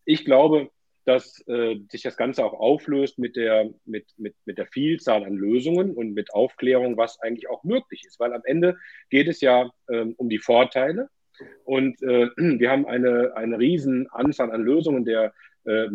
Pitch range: 115-135 Hz